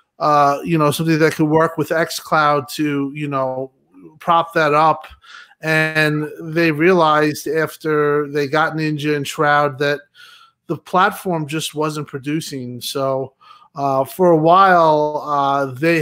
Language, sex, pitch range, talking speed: English, male, 140-165 Hz, 140 wpm